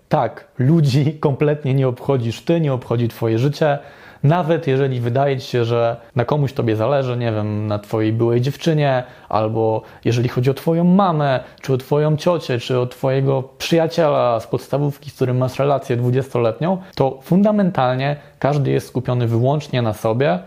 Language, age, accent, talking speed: Polish, 20-39, native, 160 wpm